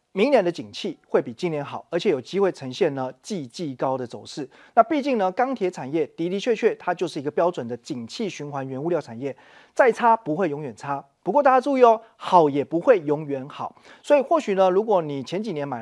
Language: Chinese